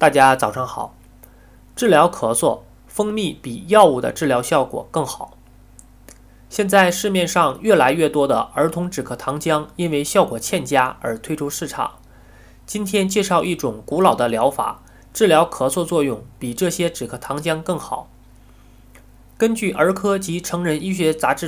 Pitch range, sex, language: 120-185 Hz, male, Chinese